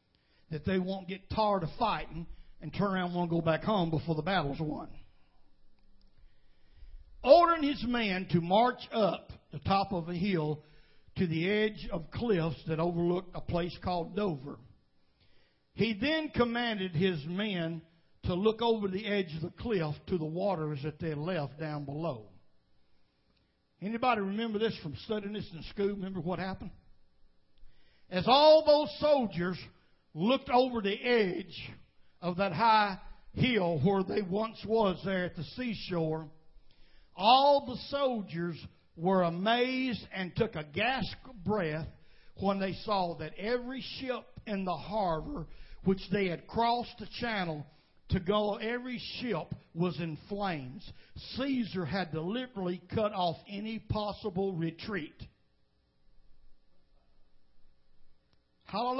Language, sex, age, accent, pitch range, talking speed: English, male, 60-79, American, 160-215 Hz, 135 wpm